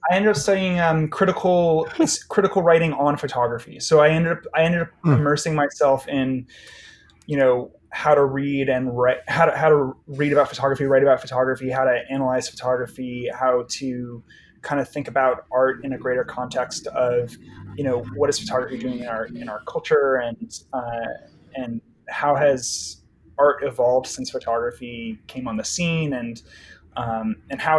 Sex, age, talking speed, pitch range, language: male, 20-39, 175 wpm, 125-160 Hz, English